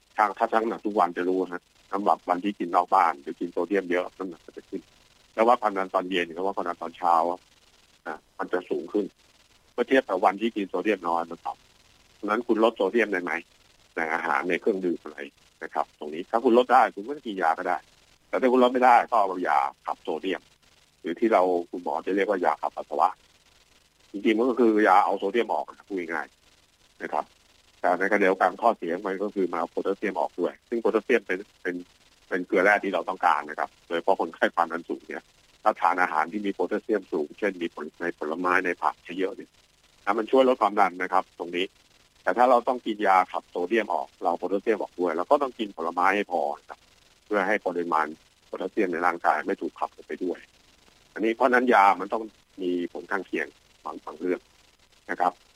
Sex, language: male, English